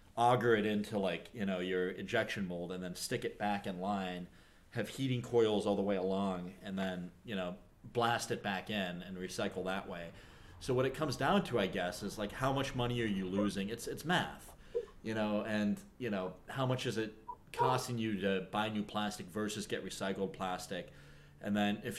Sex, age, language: male, 30-49, English